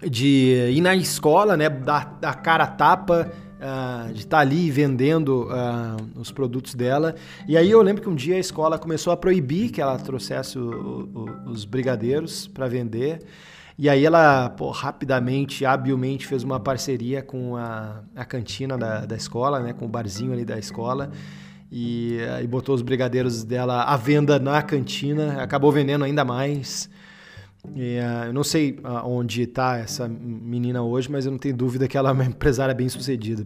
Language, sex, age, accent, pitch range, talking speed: Portuguese, male, 20-39, Brazilian, 125-155 Hz, 165 wpm